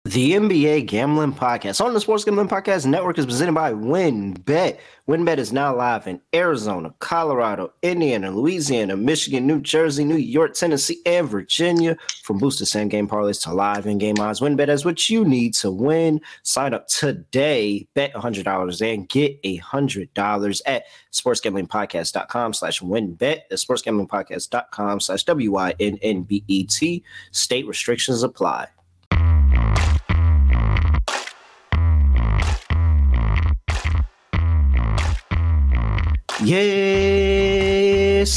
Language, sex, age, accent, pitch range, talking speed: English, male, 20-39, American, 100-150 Hz, 125 wpm